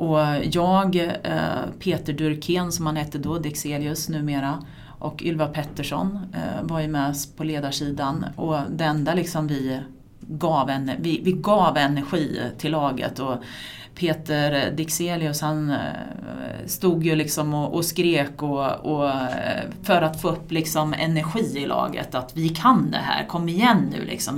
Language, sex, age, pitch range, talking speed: Swedish, female, 30-49, 140-180 Hz, 150 wpm